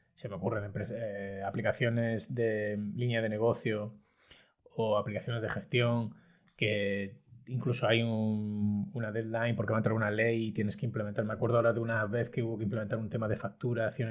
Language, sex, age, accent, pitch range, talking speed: Spanish, male, 30-49, Spanish, 110-130 Hz, 185 wpm